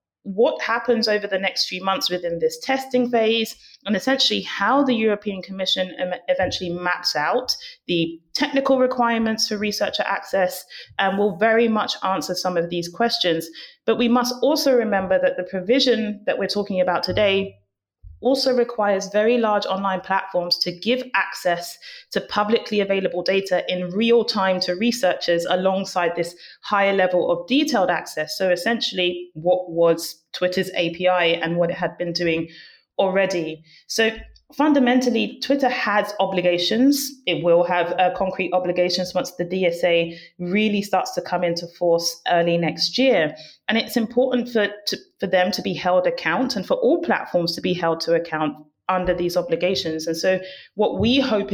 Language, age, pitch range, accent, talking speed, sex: English, 30-49, 175-225 Hz, British, 160 wpm, female